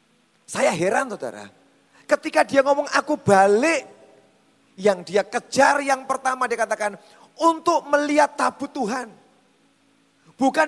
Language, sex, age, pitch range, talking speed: Indonesian, male, 30-49, 190-295 Hz, 110 wpm